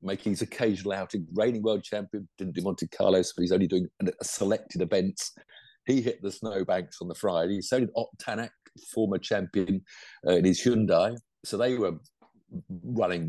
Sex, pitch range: male, 90-105 Hz